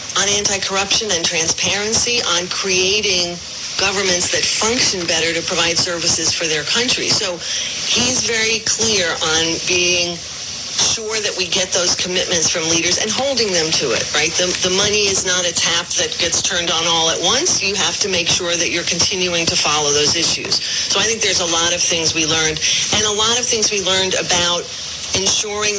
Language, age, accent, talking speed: English, 40-59, American, 190 wpm